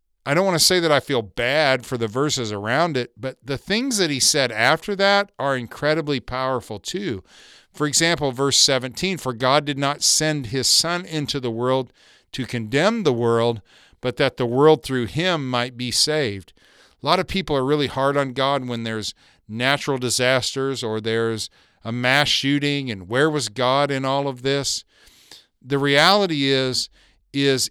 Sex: male